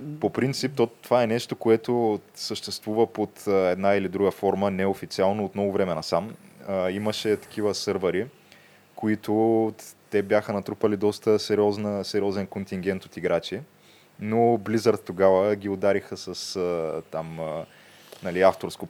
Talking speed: 135 wpm